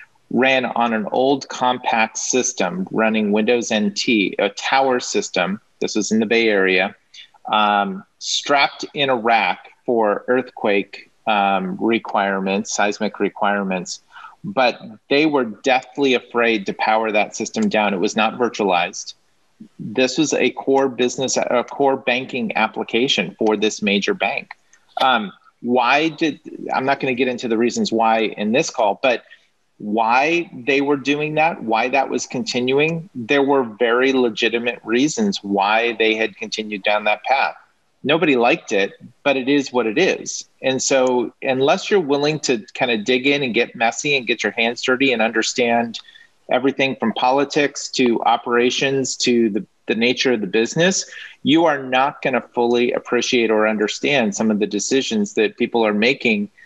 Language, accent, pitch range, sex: English, American, 110-135 Hz, male